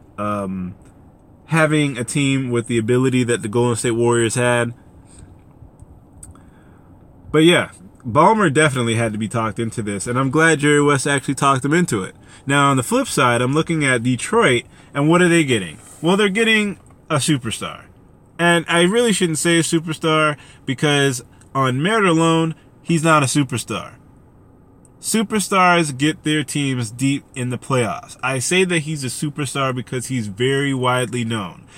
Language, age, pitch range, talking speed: English, 20-39, 120-155 Hz, 160 wpm